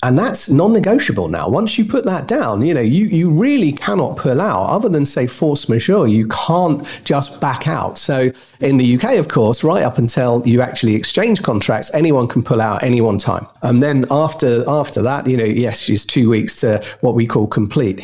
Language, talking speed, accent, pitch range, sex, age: English, 210 wpm, British, 125-155 Hz, male, 40-59